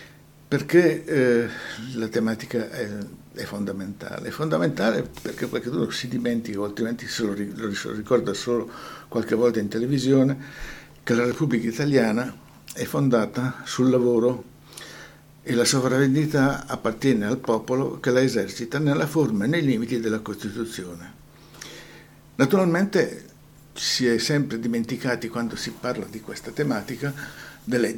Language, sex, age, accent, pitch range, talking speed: Italian, male, 60-79, native, 110-140 Hz, 125 wpm